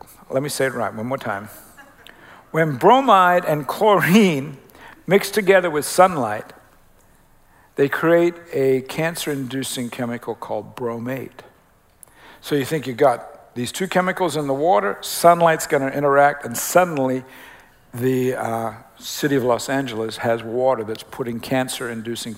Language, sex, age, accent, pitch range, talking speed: English, male, 60-79, American, 125-165 Hz, 135 wpm